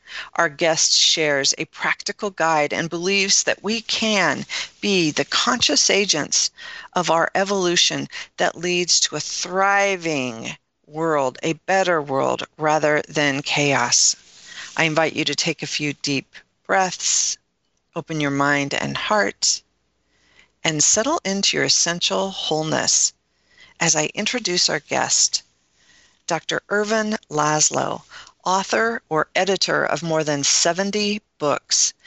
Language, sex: English, female